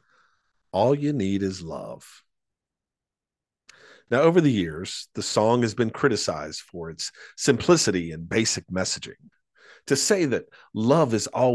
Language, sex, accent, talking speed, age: English, male, American, 135 wpm, 50-69